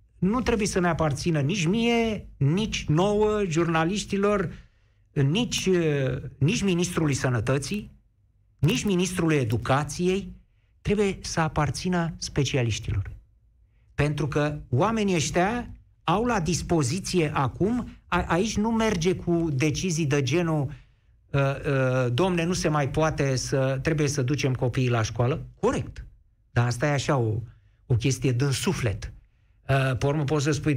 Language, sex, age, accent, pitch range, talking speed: Romanian, male, 50-69, native, 125-170 Hz, 125 wpm